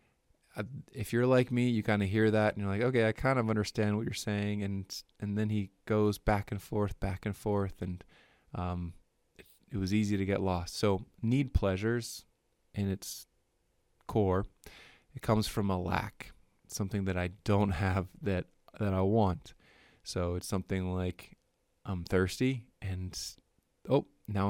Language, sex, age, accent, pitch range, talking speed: English, male, 20-39, American, 95-115 Hz, 170 wpm